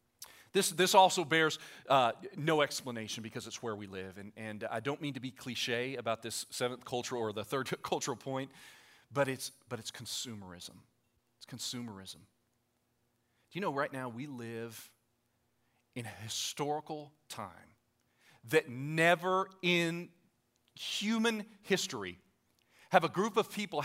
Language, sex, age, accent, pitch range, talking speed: English, male, 40-59, American, 115-150 Hz, 145 wpm